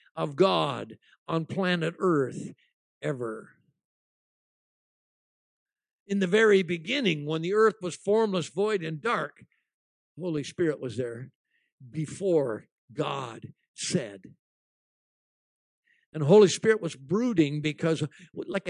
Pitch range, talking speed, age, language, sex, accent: 165-215 Hz, 105 wpm, 60-79, English, male, American